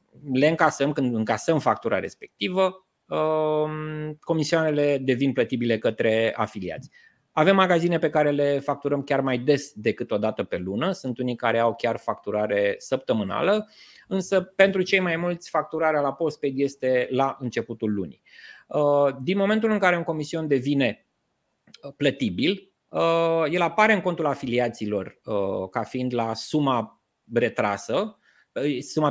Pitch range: 125-175 Hz